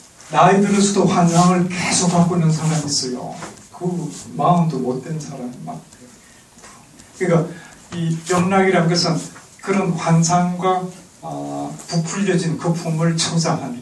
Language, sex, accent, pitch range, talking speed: English, male, Korean, 165-185 Hz, 95 wpm